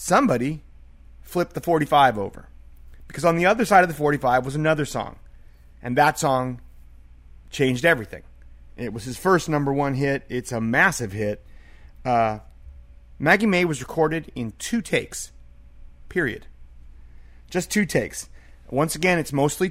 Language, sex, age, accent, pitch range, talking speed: English, male, 30-49, American, 110-160 Hz, 160 wpm